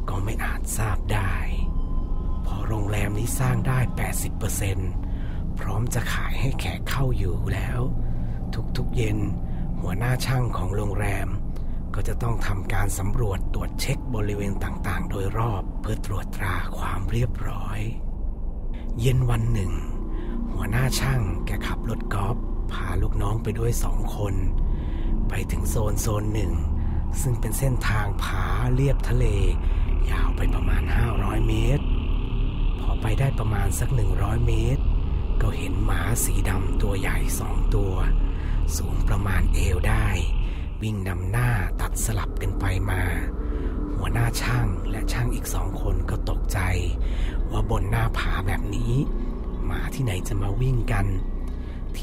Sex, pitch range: male, 85-110 Hz